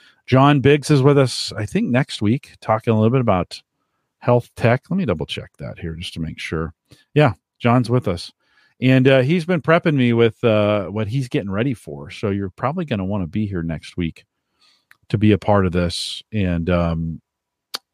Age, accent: 40-59, American